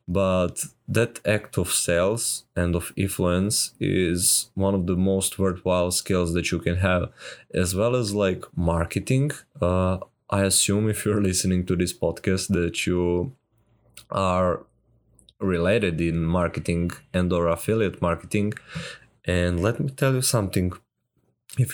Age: 20-39